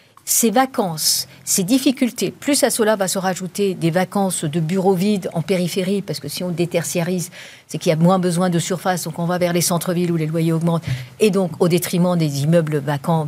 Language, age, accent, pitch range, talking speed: French, 50-69, French, 165-225 Hz, 210 wpm